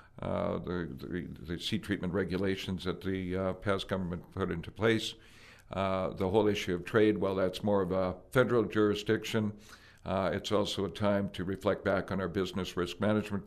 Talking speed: 185 wpm